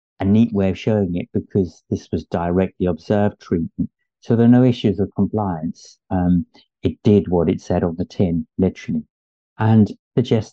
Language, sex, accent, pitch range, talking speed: English, male, British, 90-105 Hz, 175 wpm